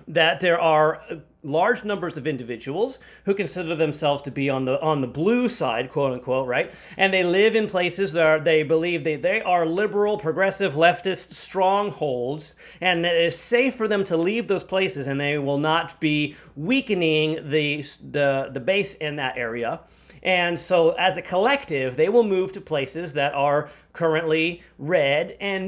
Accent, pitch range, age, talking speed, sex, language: American, 145-190 Hz, 30-49, 175 wpm, male, English